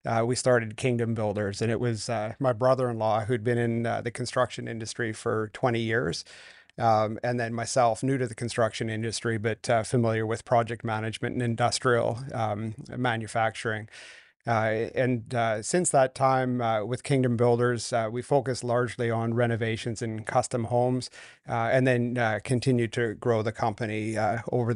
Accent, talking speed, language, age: American, 170 wpm, English, 30-49